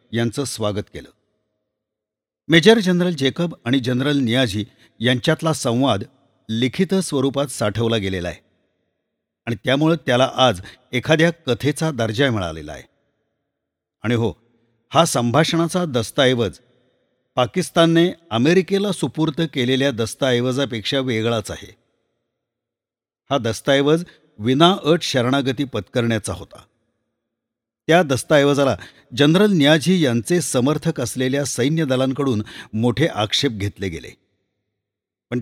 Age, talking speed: 50-69, 95 wpm